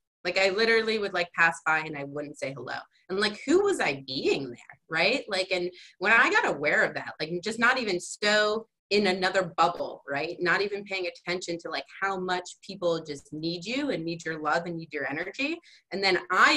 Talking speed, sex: 215 wpm, female